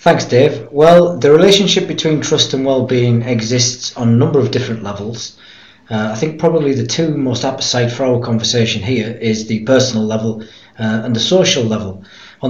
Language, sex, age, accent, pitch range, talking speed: English, male, 40-59, British, 115-135 Hz, 180 wpm